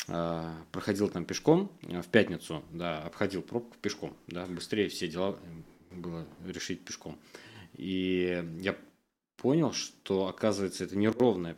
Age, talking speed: 20-39, 120 wpm